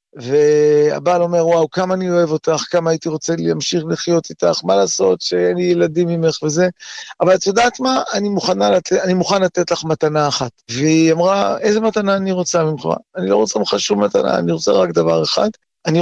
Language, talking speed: Hebrew, 190 wpm